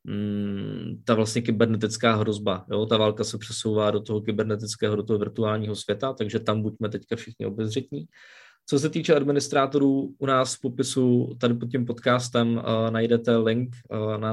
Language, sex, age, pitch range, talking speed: Czech, male, 20-39, 110-125 Hz, 165 wpm